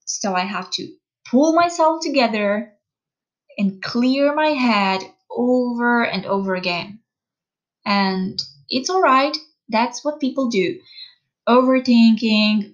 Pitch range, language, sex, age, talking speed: 200-260 Hz, English, female, 20-39, 110 wpm